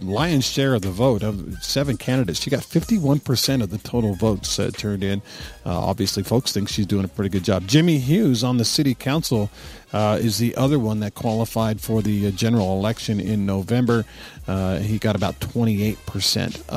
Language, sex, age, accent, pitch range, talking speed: English, male, 50-69, American, 105-130 Hz, 190 wpm